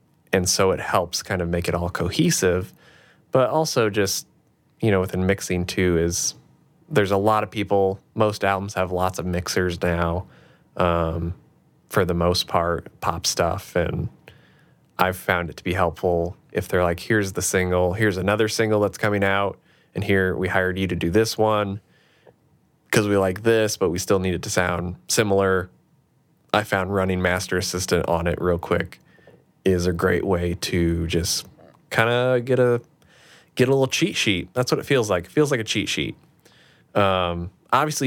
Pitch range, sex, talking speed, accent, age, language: 90-110 Hz, male, 180 wpm, American, 20-39, English